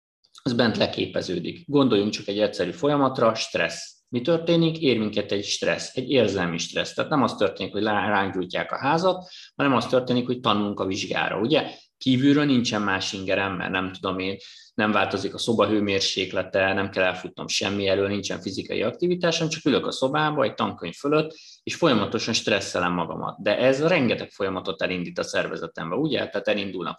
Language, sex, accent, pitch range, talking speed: English, male, Finnish, 100-140 Hz, 165 wpm